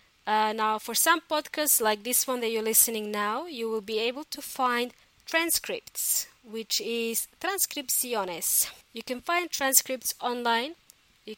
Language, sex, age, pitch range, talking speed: English, female, 20-39, 215-270 Hz, 150 wpm